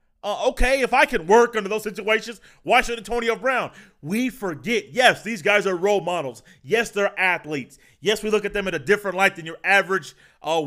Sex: male